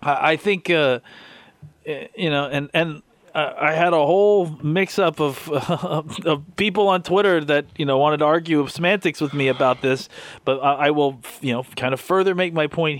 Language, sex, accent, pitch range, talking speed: English, male, American, 130-175 Hz, 190 wpm